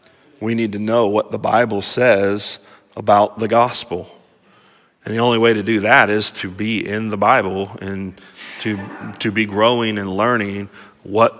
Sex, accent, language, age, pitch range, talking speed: male, American, English, 30-49, 100-130 Hz, 170 wpm